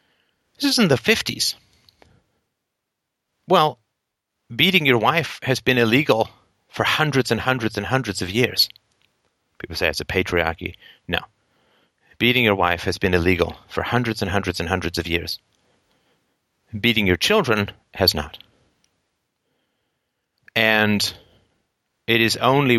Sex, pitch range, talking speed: male, 95-145 Hz, 130 wpm